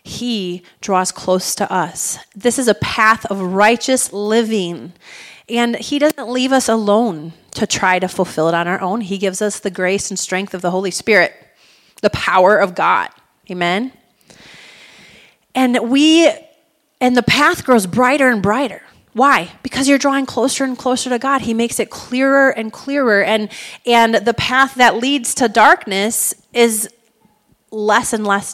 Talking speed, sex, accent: 165 wpm, female, American